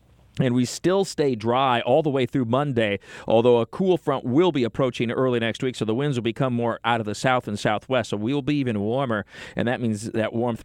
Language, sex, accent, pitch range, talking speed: English, male, American, 110-145 Hz, 235 wpm